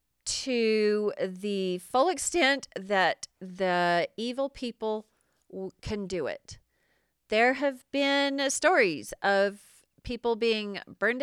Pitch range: 180-245 Hz